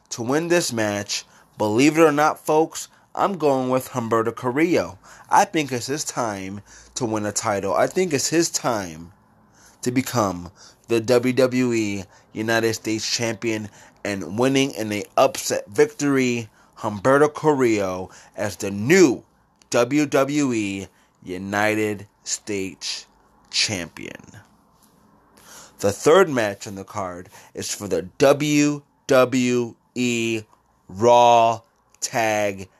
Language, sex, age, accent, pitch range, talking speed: English, male, 30-49, American, 100-130 Hz, 115 wpm